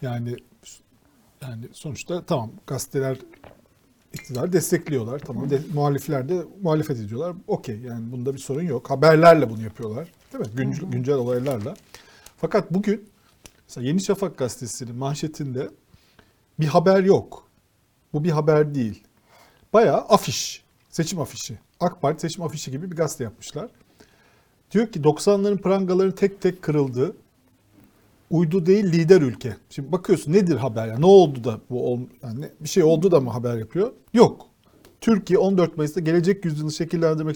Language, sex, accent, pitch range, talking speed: Turkish, male, native, 130-175 Hz, 145 wpm